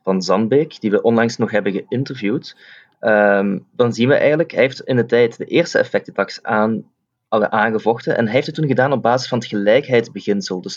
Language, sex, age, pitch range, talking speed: Dutch, male, 20-39, 105-130 Hz, 185 wpm